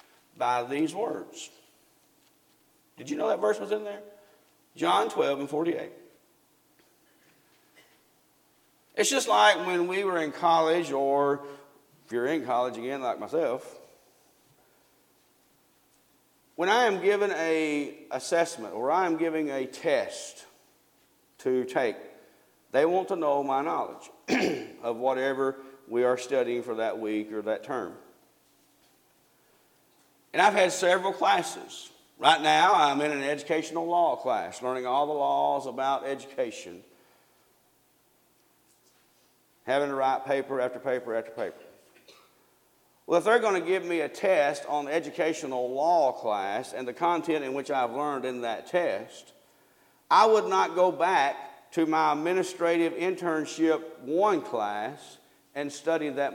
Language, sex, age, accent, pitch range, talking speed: English, male, 50-69, American, 135-175 Hz, 135 wpm